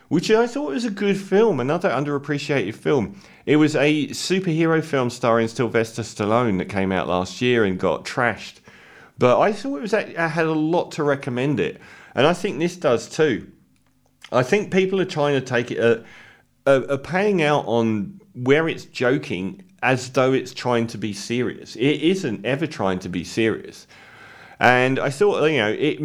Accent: British